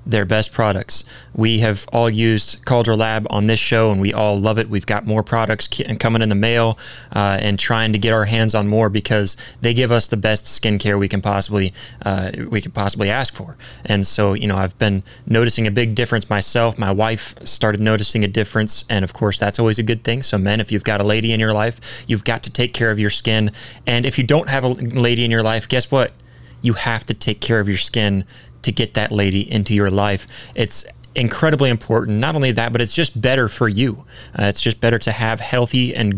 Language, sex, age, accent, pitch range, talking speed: English, male, 20-39, American, 105-120 Hz, 230 wpm